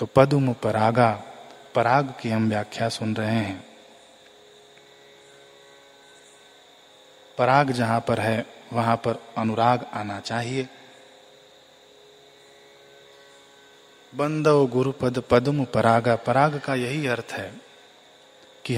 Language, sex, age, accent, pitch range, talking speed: Hindi, male, 30-49, native, 95-135 Hz, 90 wpm